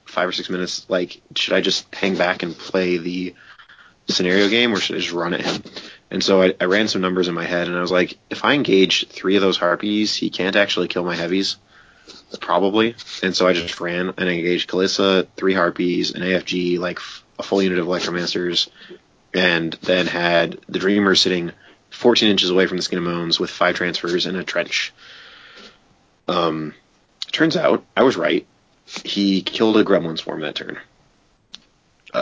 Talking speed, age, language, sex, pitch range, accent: 190 wpm, 30-49, English, male, 90-95 Hz, American